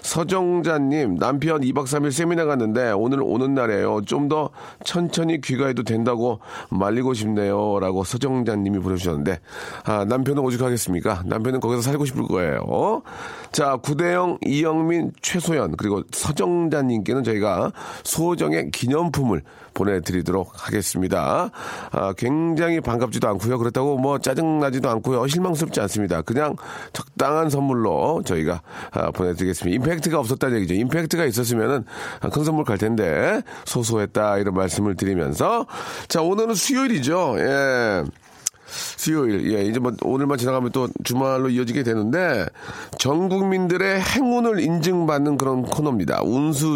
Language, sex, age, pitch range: Korean, male, 40-59, 110-160 Hz